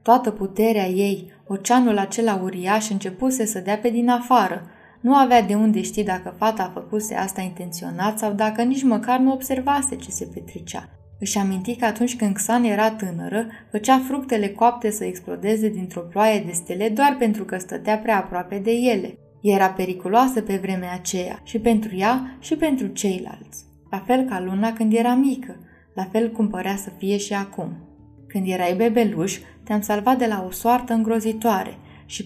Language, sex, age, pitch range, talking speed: Romanian, female, 20-39, 195-235 Hz, 175 wpm